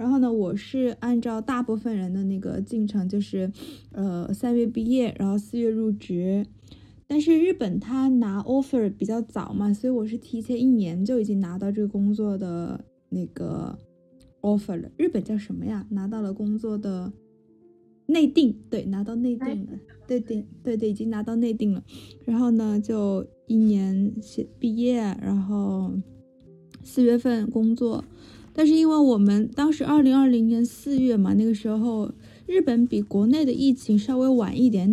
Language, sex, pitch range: Chinese, female, 200-250 Hz